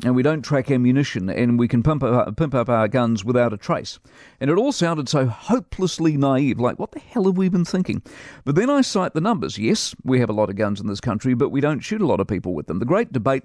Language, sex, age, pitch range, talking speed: English, male, 50-69, 120-150 Hz, 270 wpm